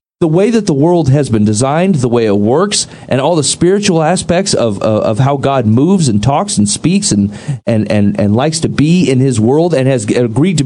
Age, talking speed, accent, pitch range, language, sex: 40-59, 230 wpm, American, 120-170 Hz, English, male